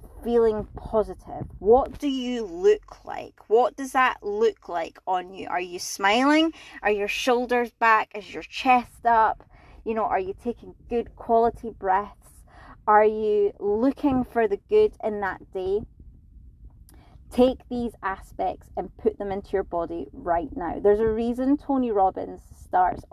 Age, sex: 20-39, female